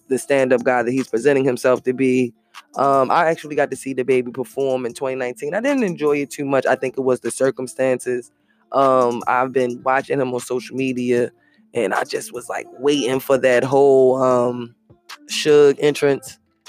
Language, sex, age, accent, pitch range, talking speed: English, female, 20-39, American, 130-150 Hz, 185 wpm